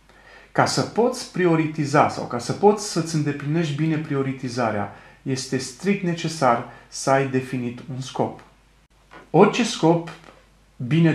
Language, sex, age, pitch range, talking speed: Romanian, male, 30-49, 120-165 Hz, 125 wpm